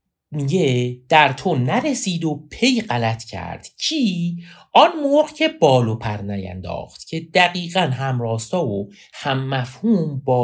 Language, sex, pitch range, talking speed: Persian, male, 100-160 Hz, 130 wpm